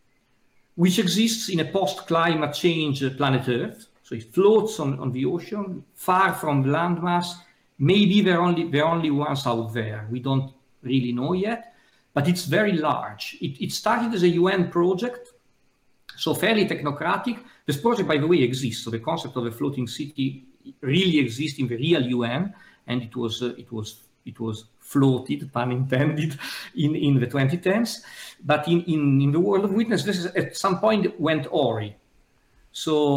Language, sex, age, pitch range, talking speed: English, male, 50-69, 130-185 Hz, 175 wpm